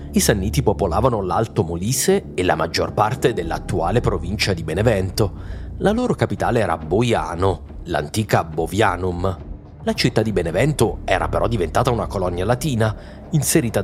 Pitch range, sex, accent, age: 90-120 Hz, male, native, 30-49